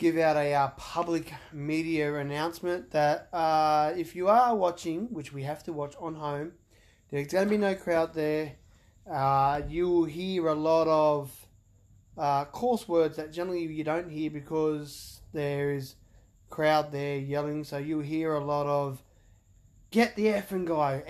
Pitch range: 140-170 Hz